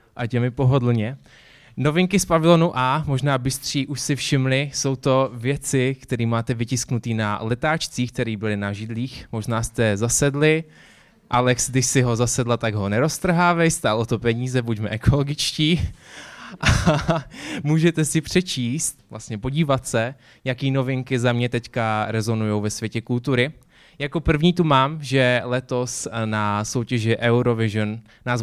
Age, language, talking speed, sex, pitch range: 20-39, Czech, 140 wpm, male, 110-140 Hz